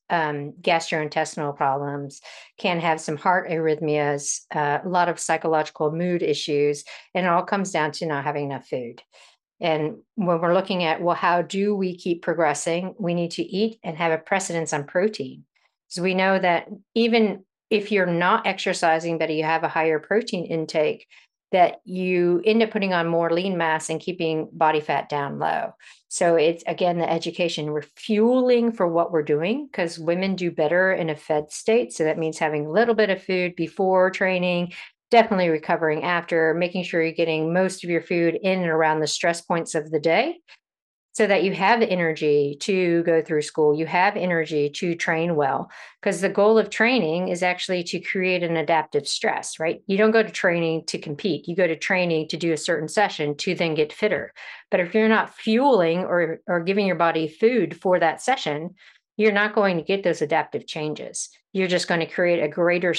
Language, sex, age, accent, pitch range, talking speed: English, female, 50-69, American, 160-185 Hz, 195 wpm